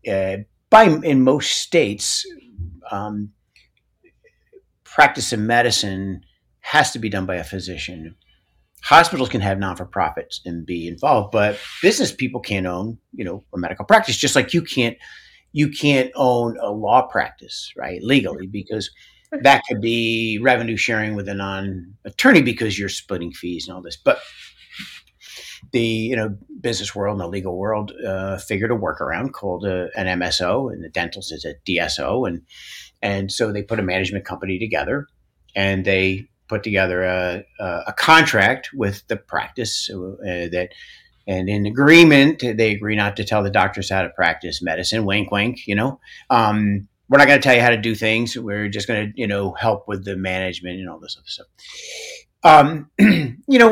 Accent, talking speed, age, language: American, 175 wpm, 50-69, English